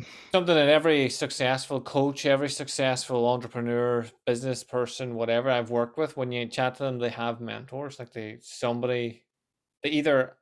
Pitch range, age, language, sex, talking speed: 120-135 Hz, 20-39, English, male, 155 wpm